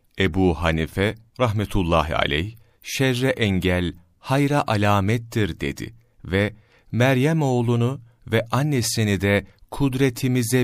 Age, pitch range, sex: 40-59, 90-120 Hz, male